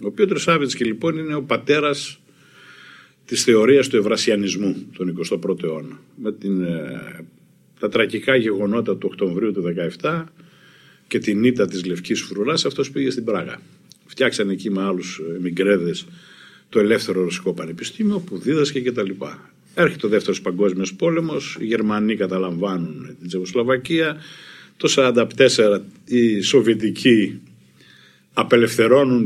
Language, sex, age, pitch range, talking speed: Greek, male, 50-69, 100-150 Hz, 130 wpm